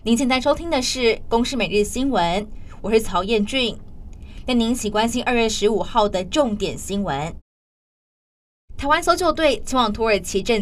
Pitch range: 210-280 Hz